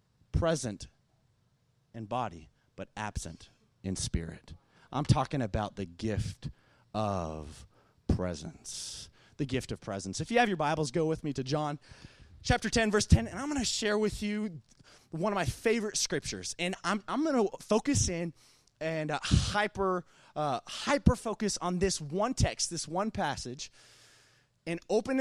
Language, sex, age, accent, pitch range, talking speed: English, male, 30-49, American, 130-205 Hz, 155 wpm